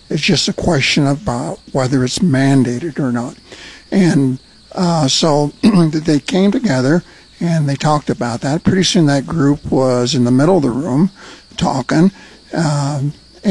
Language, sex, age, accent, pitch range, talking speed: English, male, 60-79, American, 135-165 Hz, 150 wpm